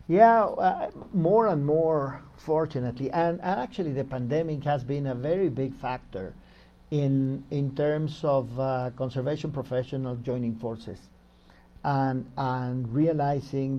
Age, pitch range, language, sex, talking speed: 50-69, 125-160 Hz, English, male, 120 wpm